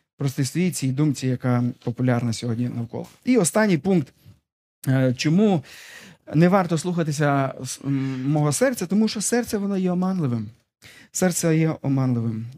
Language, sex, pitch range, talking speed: Ukrainian, male, 140-185 Hz, 120 wpm